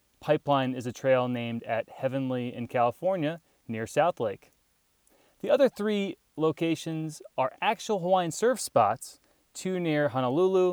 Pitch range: 130-185 Hz